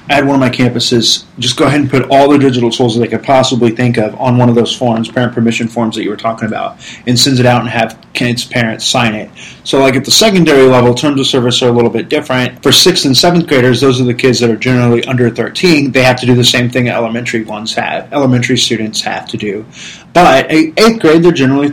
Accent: American